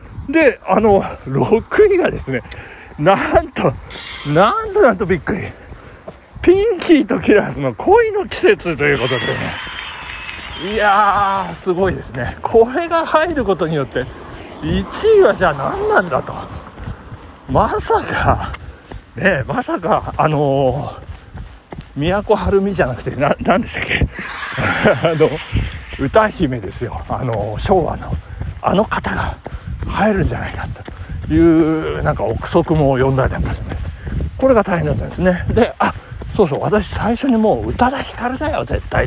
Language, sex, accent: Japanese, male, native